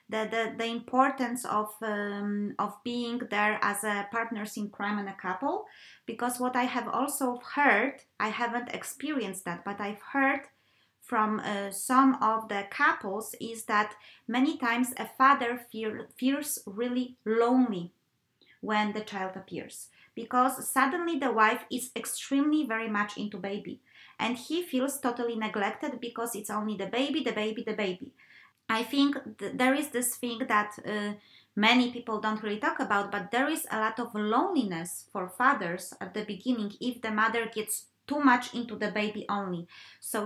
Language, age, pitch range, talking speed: English, 20-39, 205-250 Hz, 165 wpm